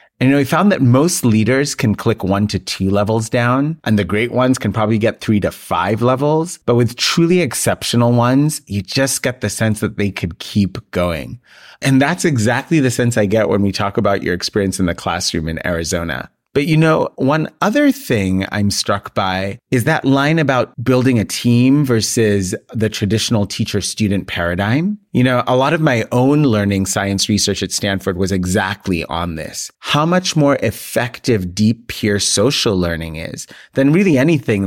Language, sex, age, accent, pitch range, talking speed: English, male, 30-49, American, 100-135 Hz, 185 wpm